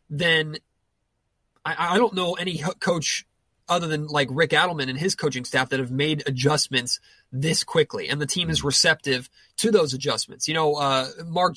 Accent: American